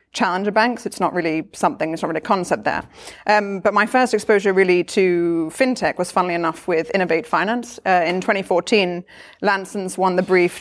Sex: female